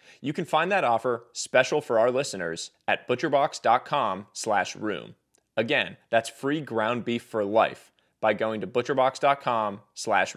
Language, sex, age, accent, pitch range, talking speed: English, male, 30-49, American, 120-155 Hz, 140 wpm